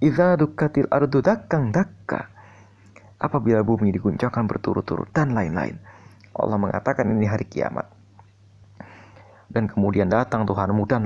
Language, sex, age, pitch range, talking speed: Indonesian, male, 30-49, 100-125 Hz, 100 wpm